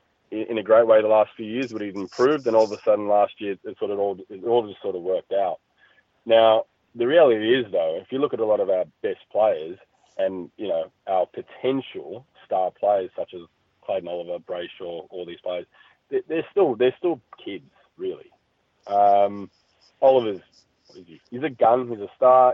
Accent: Australian